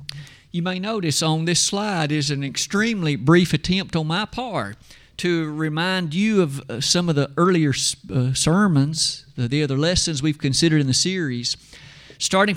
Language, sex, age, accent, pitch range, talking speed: English, male, 50-69, American, 145-200 Hz, 160 wpm